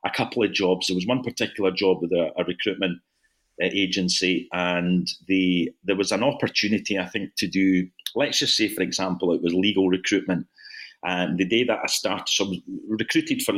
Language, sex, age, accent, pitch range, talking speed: English, male, 40-59, British, 90-115 Hz, 195 wpm